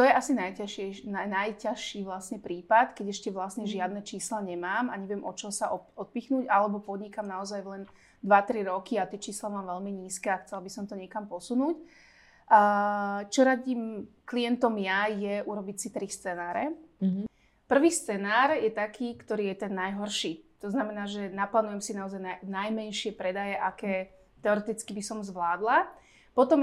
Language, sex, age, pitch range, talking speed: Slovak, female, 30-49, 190-225 Hz, 155 wpm